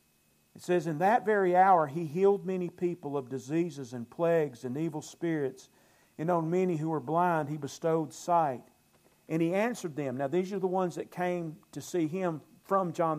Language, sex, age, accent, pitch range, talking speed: English, male, 50-69, American, 140-185 Hz, 190 wpm